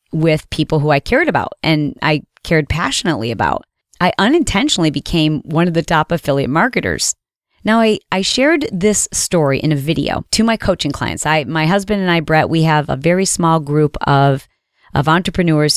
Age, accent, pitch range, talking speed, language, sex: 40-59, American, 150-195 Hz, 185 wpm, English, female